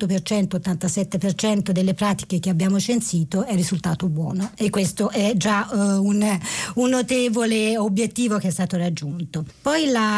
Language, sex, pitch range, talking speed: Italian, female, 175-210 Hz, 140 wpm